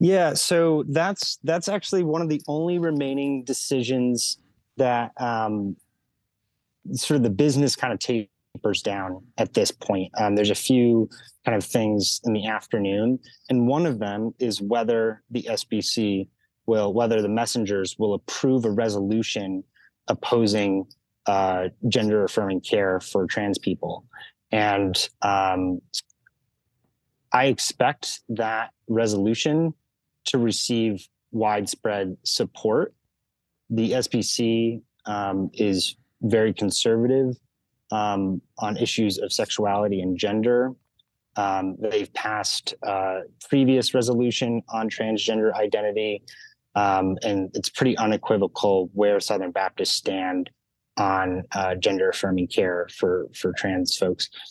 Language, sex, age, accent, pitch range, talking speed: English, male, 30-49, American, 100-125 Hz, 120 wpm